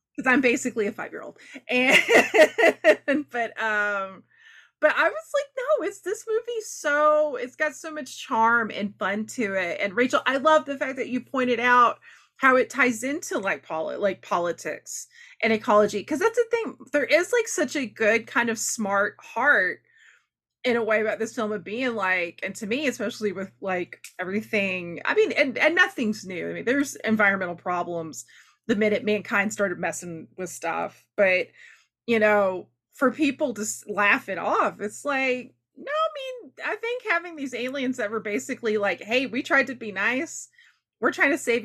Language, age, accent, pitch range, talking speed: English, 20-39, American, 205-285 Hz, 185 wpm